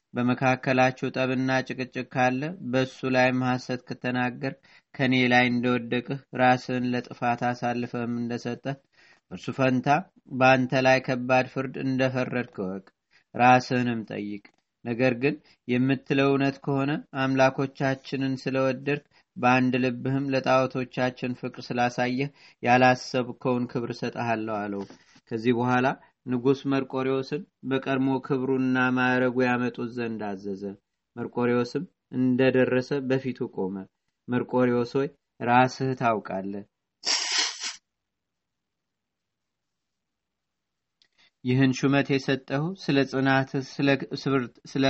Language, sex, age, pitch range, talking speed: Amharic, male, 30-49, 125-135 Hz, 85 wpm